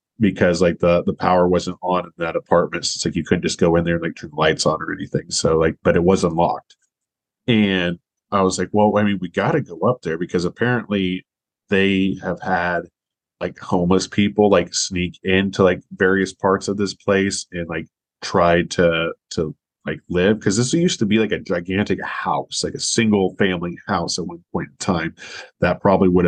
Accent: American